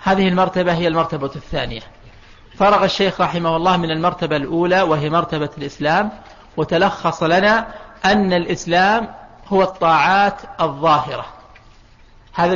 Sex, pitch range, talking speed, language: male, 165-200 Hz, 110 wpm, Arabic